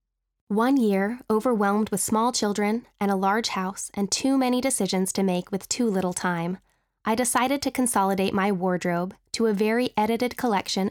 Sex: female